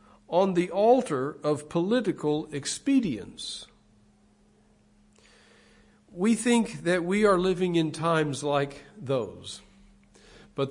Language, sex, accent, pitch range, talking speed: English, male, American, 145-220 Hz, 95 wpm